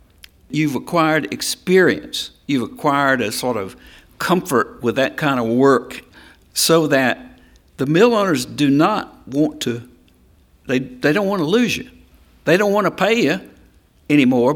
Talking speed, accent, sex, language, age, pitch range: 155 wpm, American, male, English, 60-79, 105-150 Hz